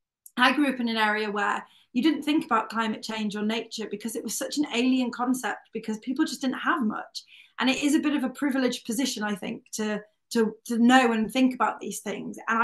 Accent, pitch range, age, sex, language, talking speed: British, 215-255 Hz, 20-39, female, English, 235 wpm